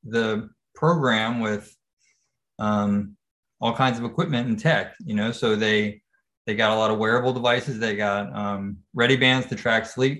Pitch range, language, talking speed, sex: 110-130 Hz, English, 170 wpm, male